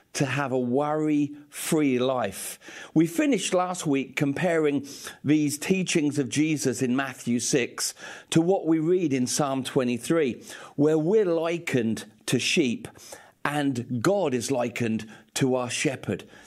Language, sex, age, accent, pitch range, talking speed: English, male, 50-69, British, 125-165 Hz, 130 wpm